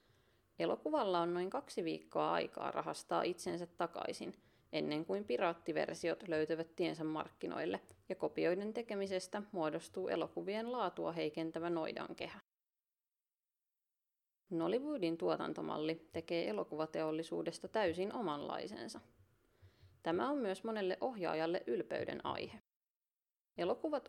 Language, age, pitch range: Finnish, 30-49, 160-210 Hz